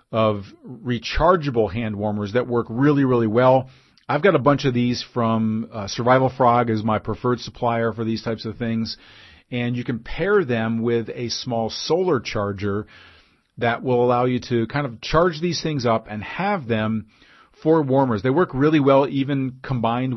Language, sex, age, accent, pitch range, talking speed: English, male, 40-59, American, 110-130 Hz, 180 wpm